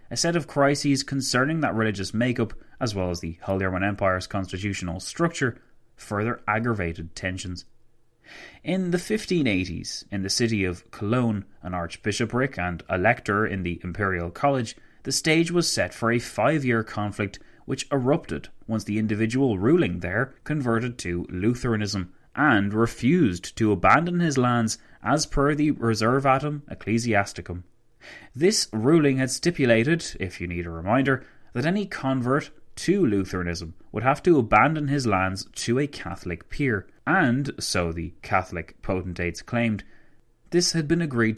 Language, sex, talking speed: English, male, 140 wpm